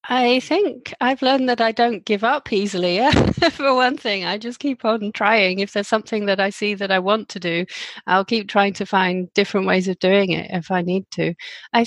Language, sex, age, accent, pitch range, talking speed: English, female, 30-49, British, 190-225 Hz, 225 wpm